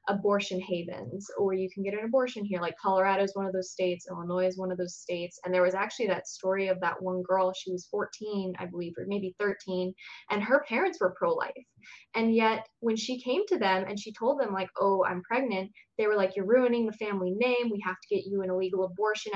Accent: American